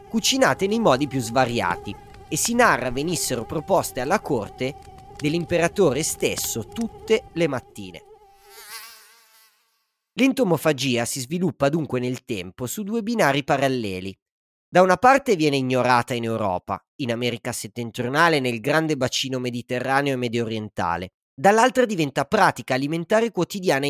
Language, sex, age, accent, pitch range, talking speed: Italian, male, 30-49, native, 120-180 Hz, 125 wpm